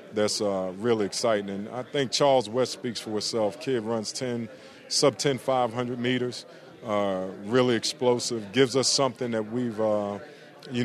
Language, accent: English, American